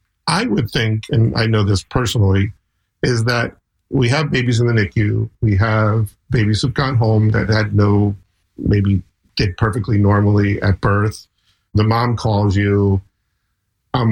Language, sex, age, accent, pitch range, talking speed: English, male, 50-69, American, 100-115 Hz, 155 wpm